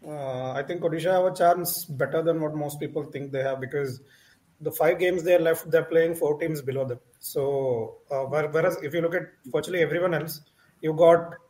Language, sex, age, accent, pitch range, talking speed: English, male, 30-49, Indian, 140-175 Hz, 215 wpm